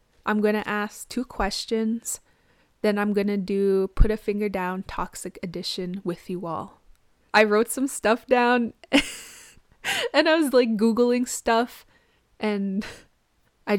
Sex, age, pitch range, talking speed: female, 20-39, 180-220 Hz, 145 wpm